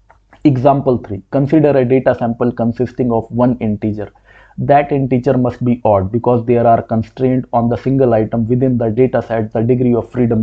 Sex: male